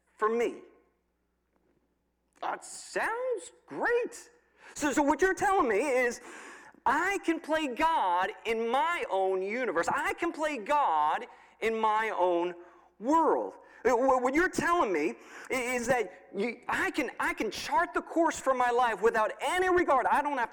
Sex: male